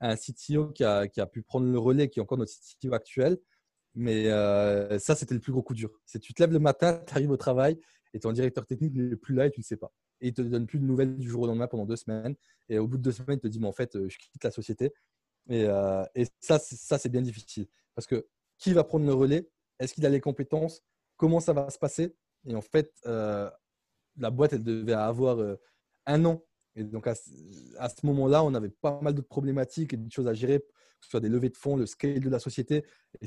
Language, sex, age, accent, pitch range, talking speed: French, male, 20-39, French, 115-140 Hz, 260 wpm